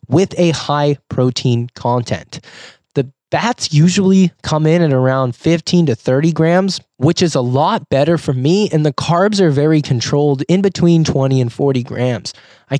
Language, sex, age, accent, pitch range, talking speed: English, male, 20-39, American, 130-165 Hz, 170 wpm